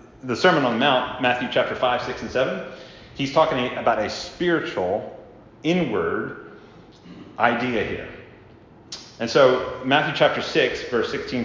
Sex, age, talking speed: male, 30-49, 135 wpm